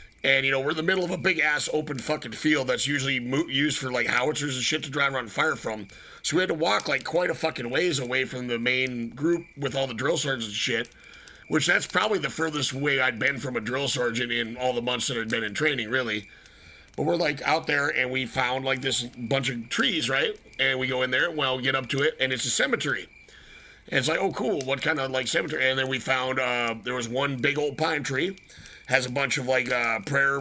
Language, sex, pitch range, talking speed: English, male, 125-145 Hz, 255 wpm